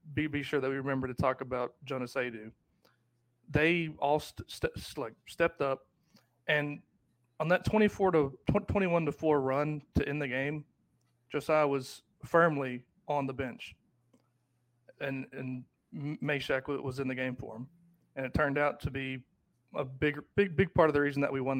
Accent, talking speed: American, 180 wpm